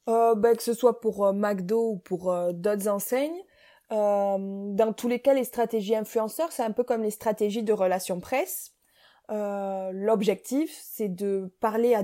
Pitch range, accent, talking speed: 200-250 Hz, French, 180 wpm